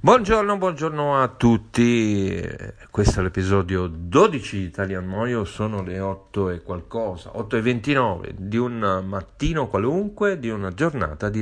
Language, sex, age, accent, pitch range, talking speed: Italian, male, 50-69, native, 95-125 Hz, 140 wpm